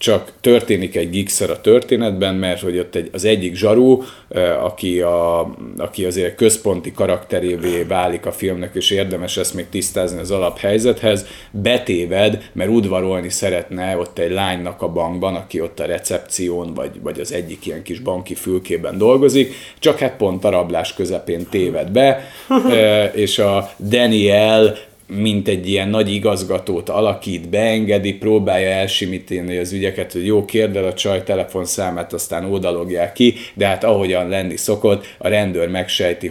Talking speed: 145 wpm